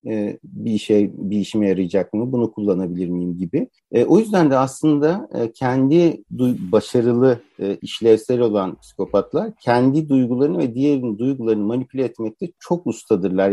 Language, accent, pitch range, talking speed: Turkish, native, 100-130 Hz, 130 wpm